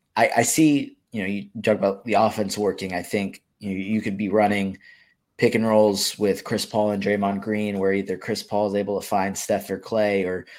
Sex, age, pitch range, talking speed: male, 20-39, 95-105 Hz, 225 wpm